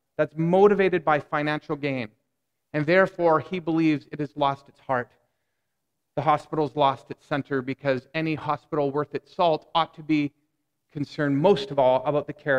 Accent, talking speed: American, 165 wpm